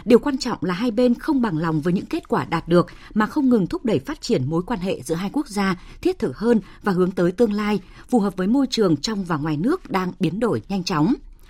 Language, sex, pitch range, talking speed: Vietnamese, female, 180-245 Hz, 265 wpm